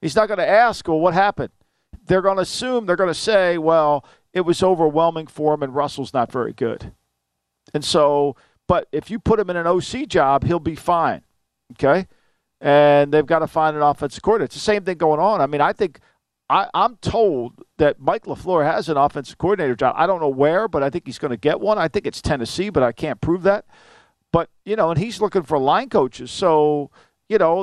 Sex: male